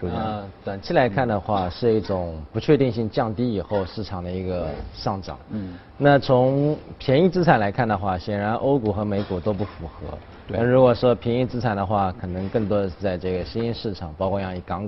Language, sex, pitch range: Chinese, male, 90-125 Hz